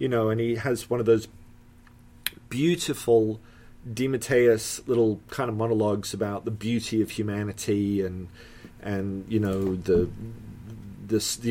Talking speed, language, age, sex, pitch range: 135 wpm, English, 30-49, male, 95-120 Hz